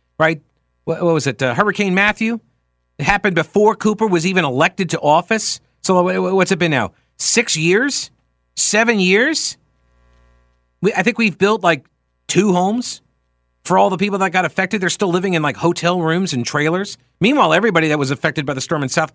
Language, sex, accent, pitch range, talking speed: English, male, American, 135-190 Hz, 190 wpm